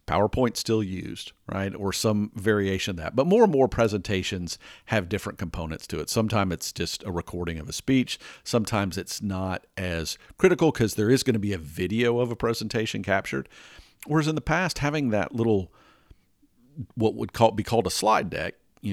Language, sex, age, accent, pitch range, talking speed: English, male, 50-69, American, 90-120 Hz, 185 wpm